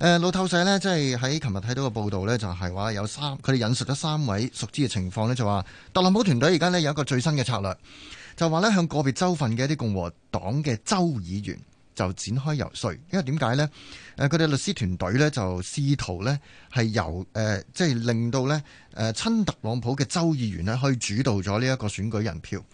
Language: Chinese